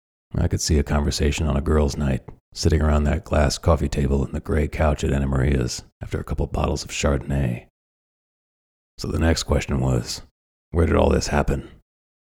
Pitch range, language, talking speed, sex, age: 70-85 Hz, English, 185 wpm, male, 40-59